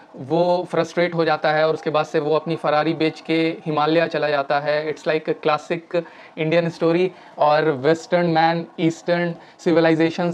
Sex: male